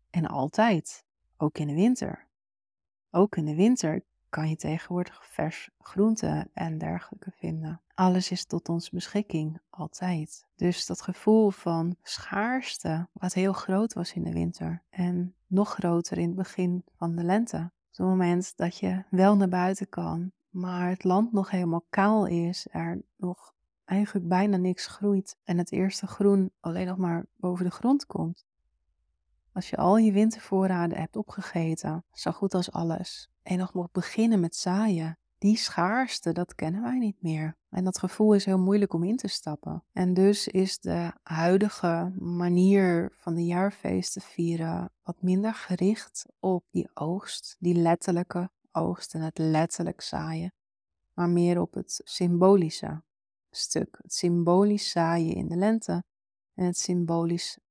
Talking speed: 155 wpm